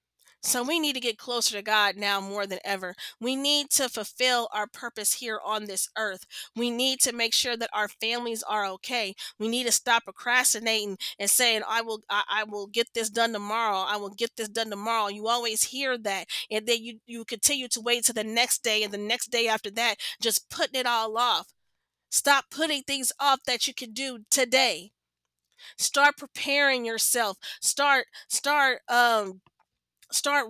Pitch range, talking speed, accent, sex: 220-265 Hz, 190 wpm, American, female